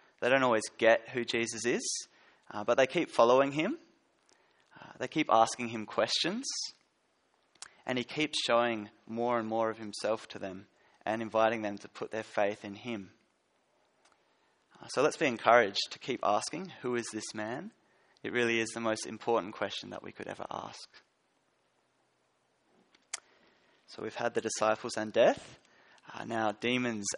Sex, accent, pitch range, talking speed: male, Australian, 110-125 Hz, 160 wpm